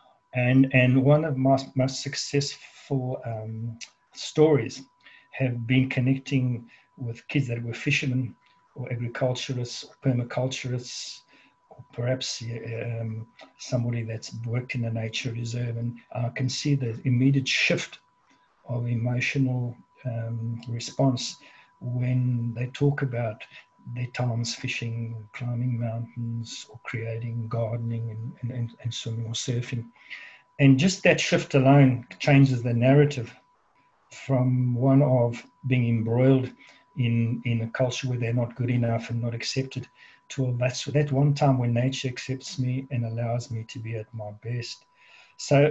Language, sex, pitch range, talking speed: English, male, 120-135 Hz, 140 wpm